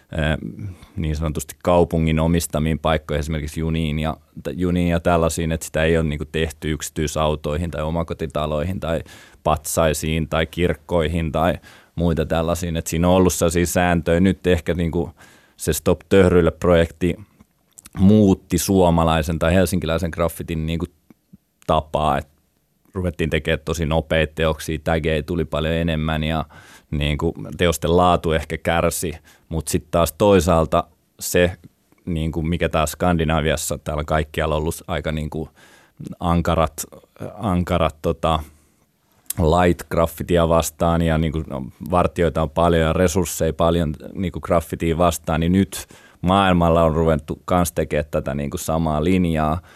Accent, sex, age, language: native, male, 20-39, Finnish